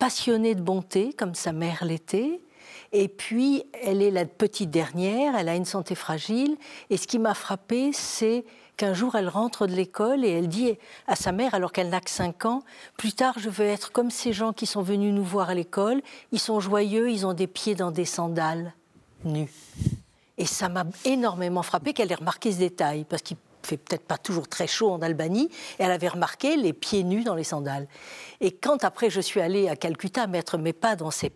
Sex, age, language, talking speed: female, 60-79, French, 220 wpm